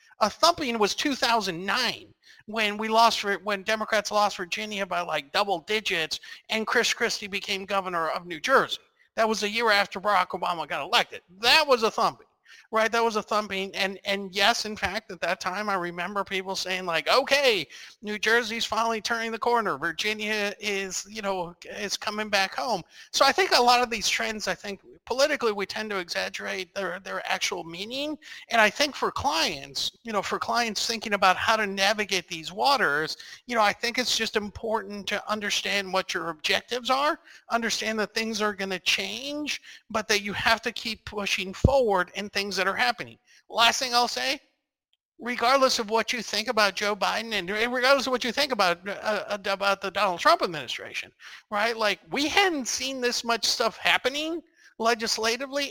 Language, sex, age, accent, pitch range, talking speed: English, male, 50-69, American, 195-240 Hz, 185 wpm